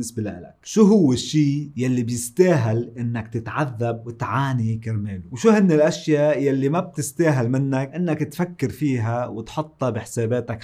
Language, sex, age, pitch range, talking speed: Arabic, male, 30-49, 115-140 Hz, 125 wpm